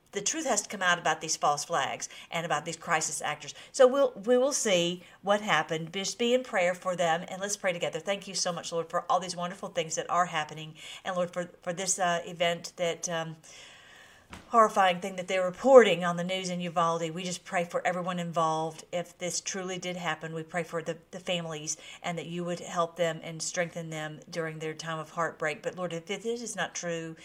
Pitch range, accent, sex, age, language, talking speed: 165-185 Hz, American, female, 50-69, English, 225 wpm